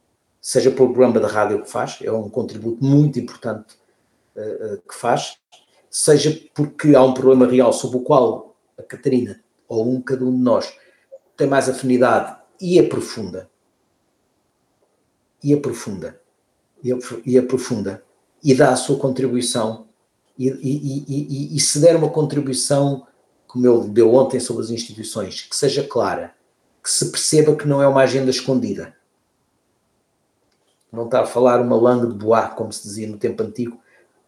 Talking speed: 160 wpm